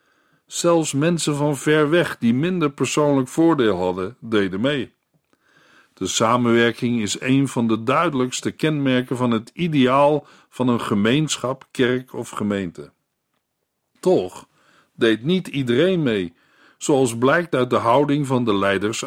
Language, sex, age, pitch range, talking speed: Dutch, male, 50-69, 115-155 Hz, 130 wpm